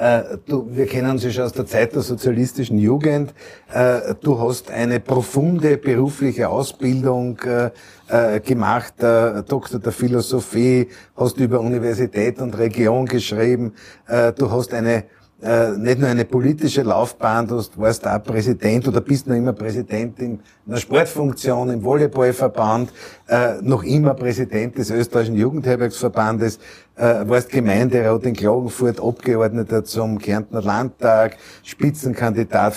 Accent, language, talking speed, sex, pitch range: Austrian, German, 135 wpm, male, 110-130 Hz